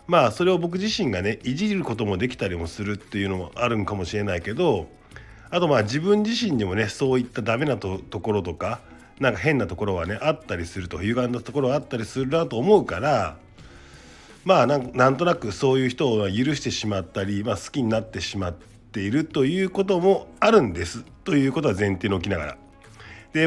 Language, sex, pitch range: Japanese, male, 105-145 Hz